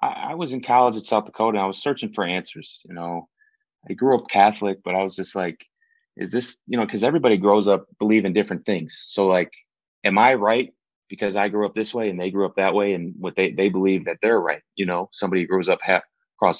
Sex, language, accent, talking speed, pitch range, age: male, English, American, 250 wpm, 90-105 Hz, 30-49